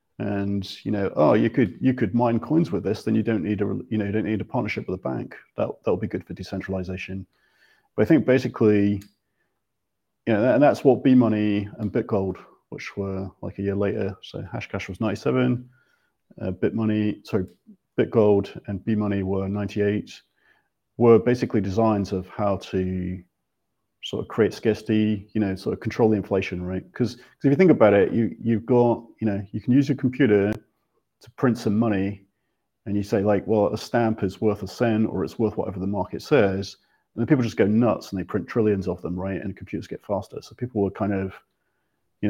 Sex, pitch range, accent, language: male, 100-115 Hz, British, English